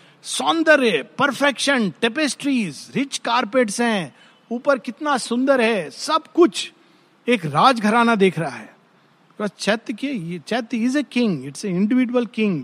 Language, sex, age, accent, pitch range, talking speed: Hindi, male, 50-69, native, 175-250 Hz, 120 wpm